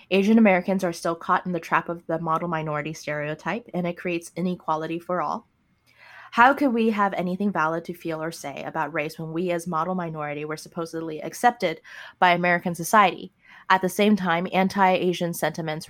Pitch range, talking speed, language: 165-195 Hz, 180 wpm, English